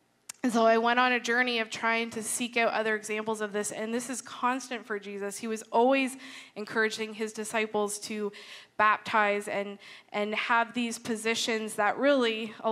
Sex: female